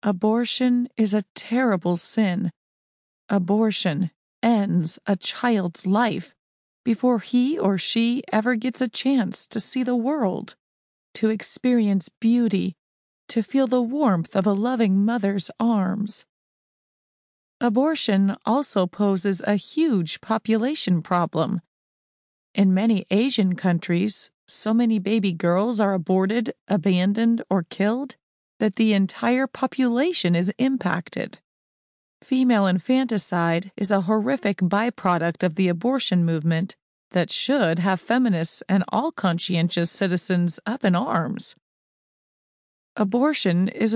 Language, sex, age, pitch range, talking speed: English, female, 30-49, 185-235 Hz, 115 wpm